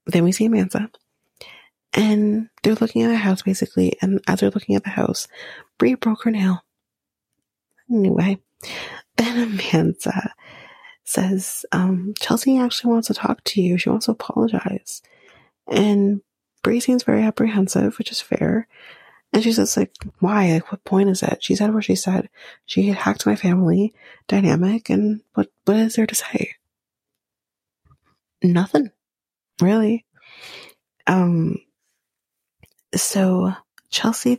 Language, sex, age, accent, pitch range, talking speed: English, female, 30-49, American, 180-225 Hz, 140 wpm